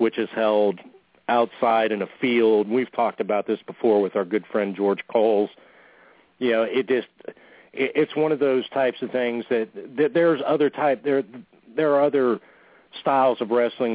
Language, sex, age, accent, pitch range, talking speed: English, male, 40-59, American, 105-125 Hz, 170 wpm